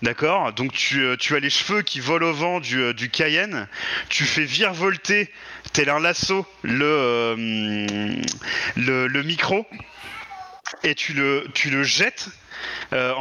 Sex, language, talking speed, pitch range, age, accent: male, French, 155 wpm, 125-165 Hz, 30-49, French